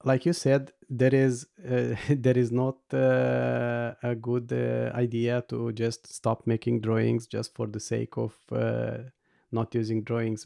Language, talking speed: English, 160 wpm